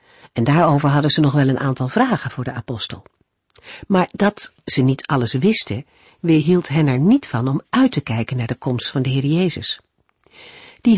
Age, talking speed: 50-69, 190 wpm